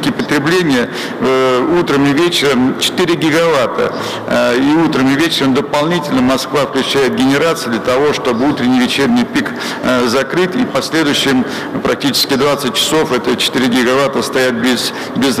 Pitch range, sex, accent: 130-150 Hz, male, native